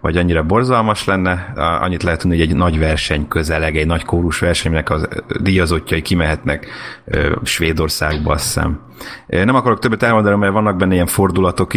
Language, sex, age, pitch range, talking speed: Hungarian, male, 30-49, 85-100 Hz, 155 wpm